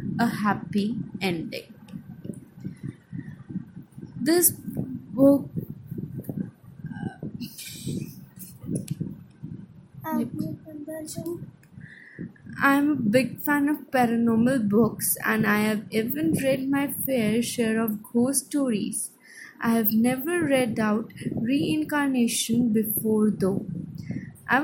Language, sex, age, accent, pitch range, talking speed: English, female, 20-39, Indian, 210-255 Hz, 85 wpm